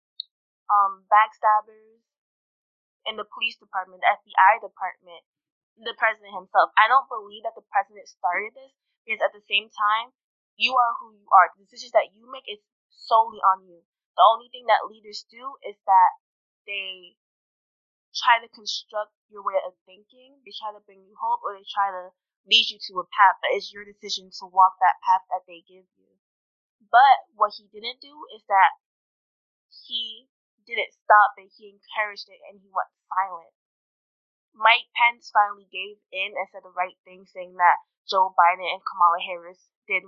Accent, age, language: American, 20-39, English